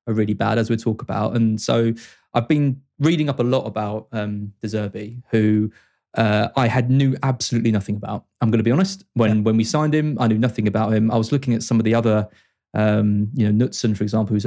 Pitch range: 110-135 Hz